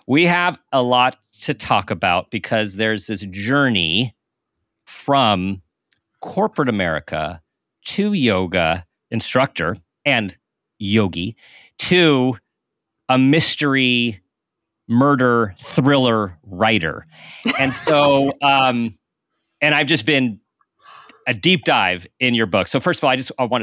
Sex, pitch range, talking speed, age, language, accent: male, 100-135 Hz, 115 wpm, 40-59, English, American